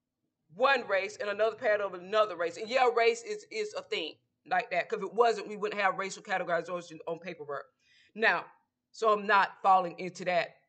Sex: female